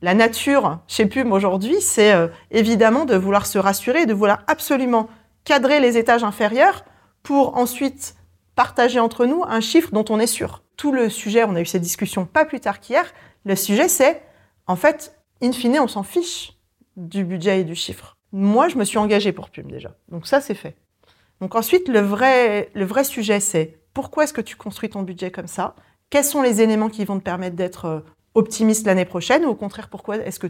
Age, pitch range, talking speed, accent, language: 30-49, 195-250 Hz, 205 wpm, French, French